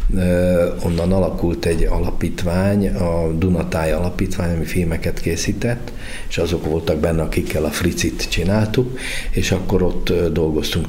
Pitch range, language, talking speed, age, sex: 80-90 Hz, Hungarian, 120 wpm, 60-79, male